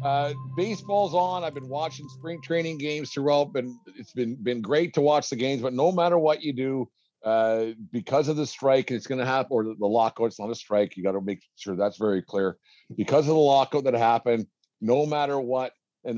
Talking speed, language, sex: 220 wpm, English, male